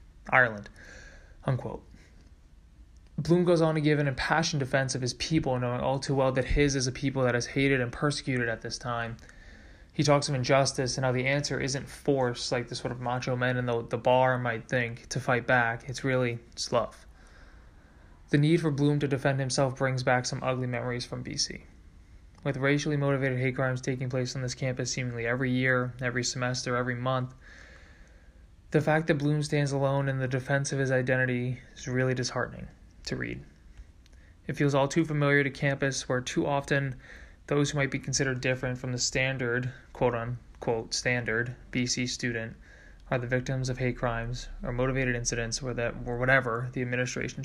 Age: 20-39